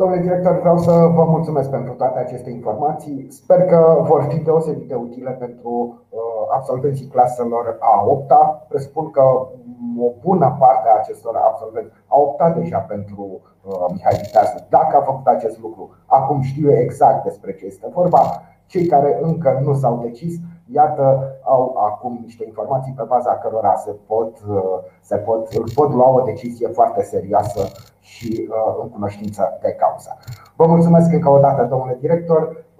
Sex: male